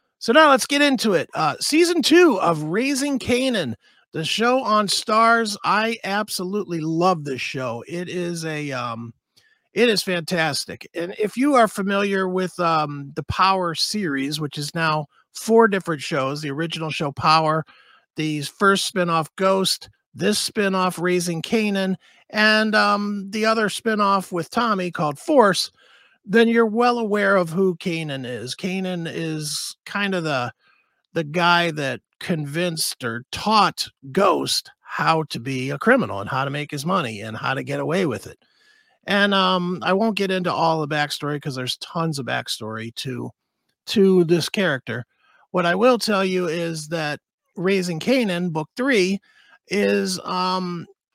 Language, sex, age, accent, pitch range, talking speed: English, male, 50-69, American, 155-210 Hz, 155 wpm